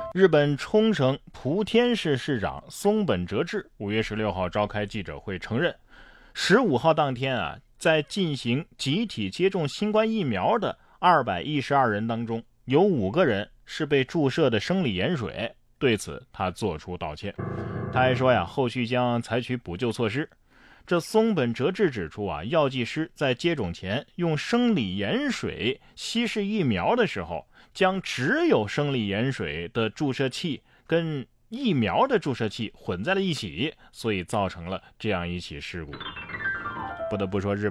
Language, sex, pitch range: Chinese, male, 105-165 Hz